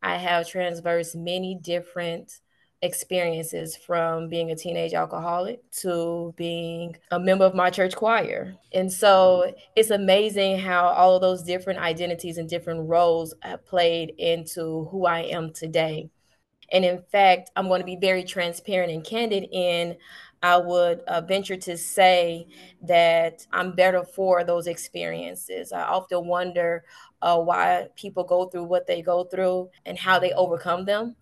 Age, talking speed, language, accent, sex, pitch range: 20-39, 155 wpm, English, American, female, 170-185 Hz